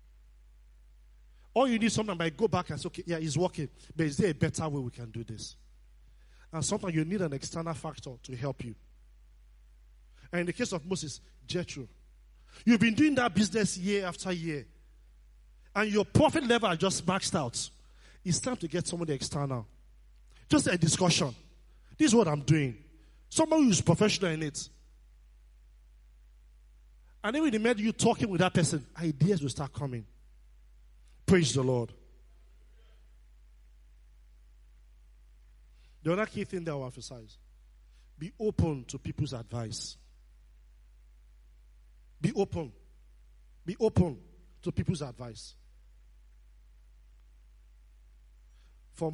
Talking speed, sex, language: 140 wpm, male, English